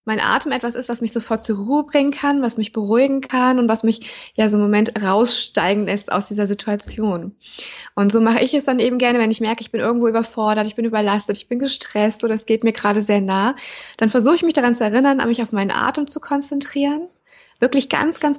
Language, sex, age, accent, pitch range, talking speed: German, female, 20-39, German, 210-260 Hz, 230 wpm